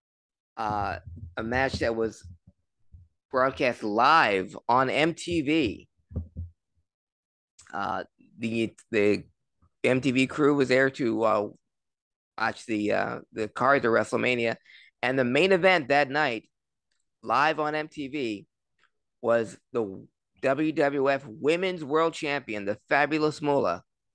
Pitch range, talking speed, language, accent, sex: 105-145 Hz, 105 wpm, English, American, male